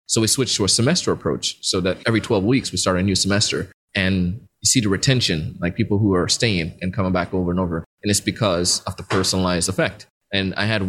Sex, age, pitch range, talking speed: male, 20-39, 95-110 Hz, 235 wpm